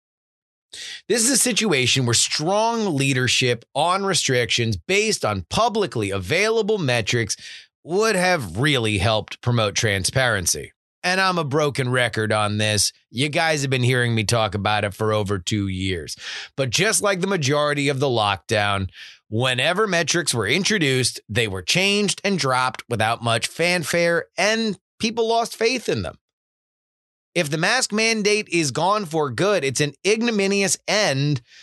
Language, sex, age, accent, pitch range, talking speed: English, male, 30-49, American, 115-195 Hz, 150 wpm